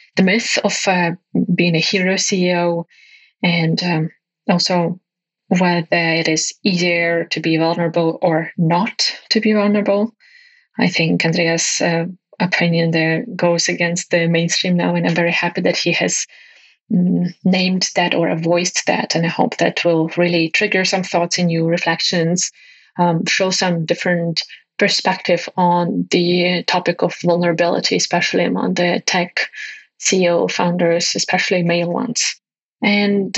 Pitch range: 170-190 Hz